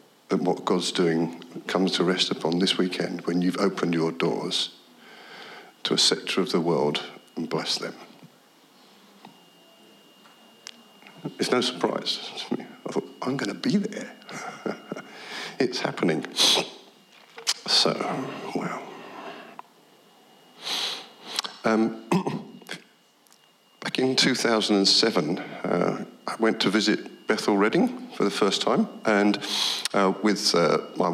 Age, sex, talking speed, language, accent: 50-69, male, 115 wpm, English, British